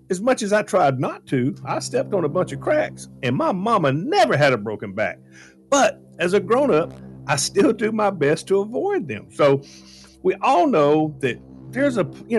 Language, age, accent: English, 50-69, American